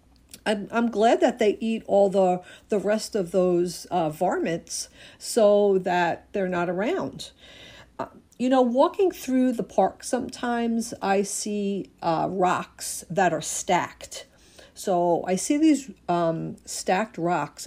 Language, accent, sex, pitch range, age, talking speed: English, American, female, 175-225 Hz, 50-69, 135 wpm